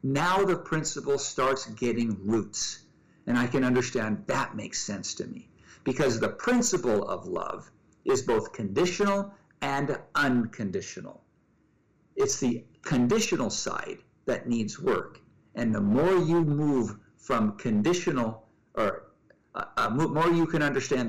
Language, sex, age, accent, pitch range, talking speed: English, male, 50-69, American, 105-155 Hz, 130 wpm